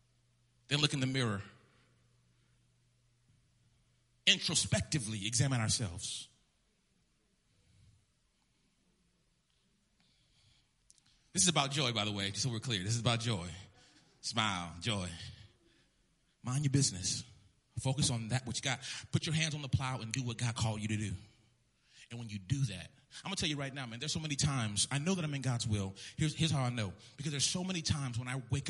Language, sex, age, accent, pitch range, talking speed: English, male, 30-49, American, 110-155 Hz, 180 wpm